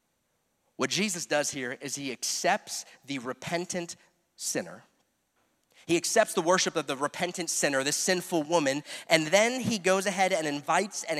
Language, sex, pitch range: English, male, 140-190 Hz